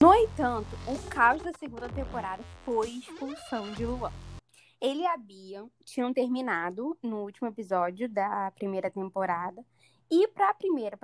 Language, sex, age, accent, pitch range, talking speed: Spanish, female, 10-29, Brazilian, 210-295 Hz, 140 wpm